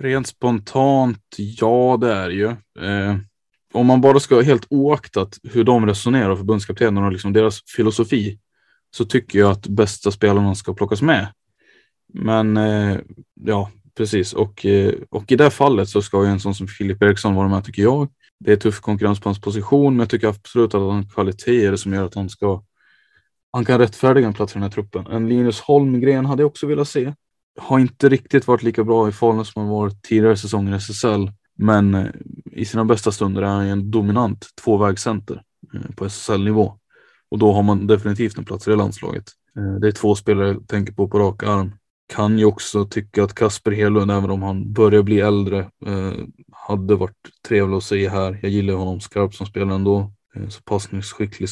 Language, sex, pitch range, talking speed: Swedish, male, 100-115 Hz, 200 wpm